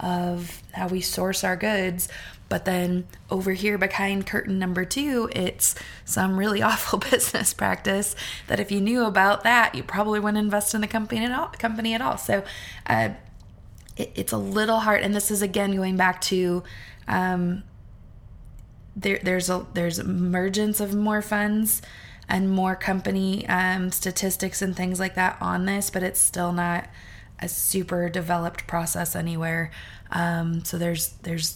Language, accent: English, American